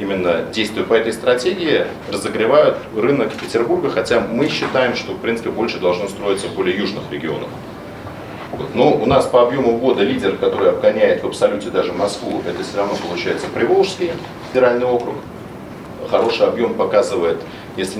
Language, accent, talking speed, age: Russian, native, 150 wpm, 40-59